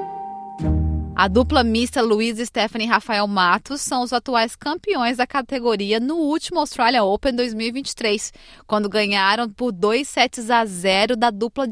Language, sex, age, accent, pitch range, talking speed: Portuguese, female, 20-39, Brazilian, 210-265 Hz, 150 wpm